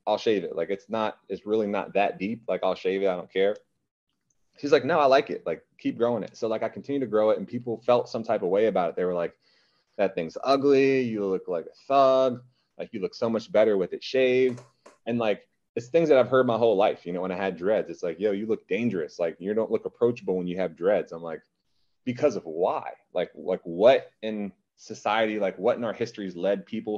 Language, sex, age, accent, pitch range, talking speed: English, male, 30-49, American, 95-130 Hz, 250 wpm